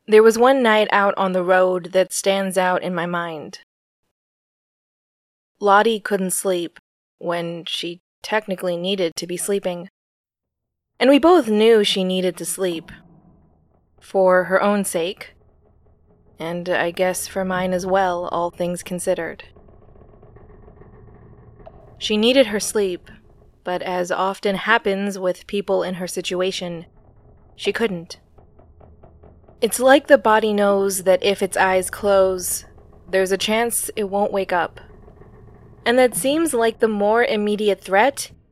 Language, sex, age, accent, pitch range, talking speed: English, female, 20-39, American, 165-210 Hz, 135 wpm